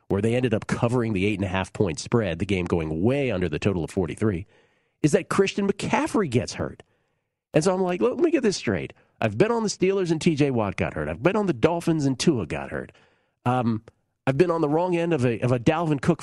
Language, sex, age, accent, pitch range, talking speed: English, male, 40-59, American, 115-170 Hz, 235 wpm